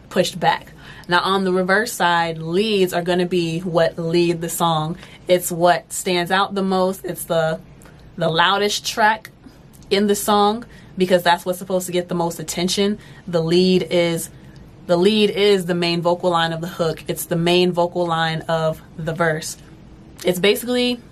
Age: 20-39